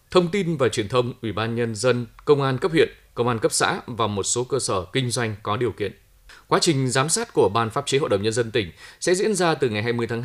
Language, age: Vietnamese, 20-39